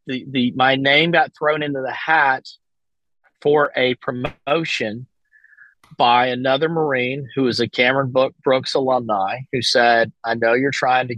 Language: English